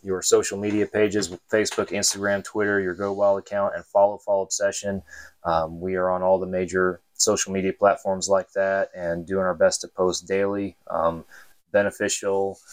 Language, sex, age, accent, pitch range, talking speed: English, male, 20-39, American, 90-100 Hz, 170 wpm